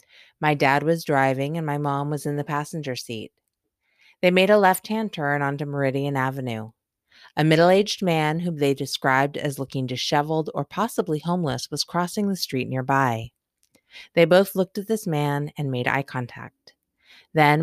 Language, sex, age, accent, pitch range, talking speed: English, female, 30-49, American, 130-165 Hz, 165 wpm